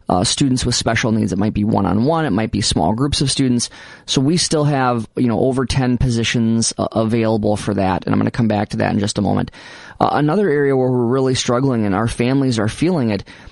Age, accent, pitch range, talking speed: 20-39, American, 115-130 Hz, 235 wpm